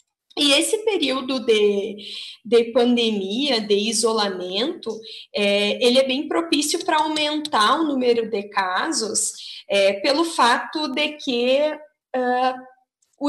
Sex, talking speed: female, 105 wpm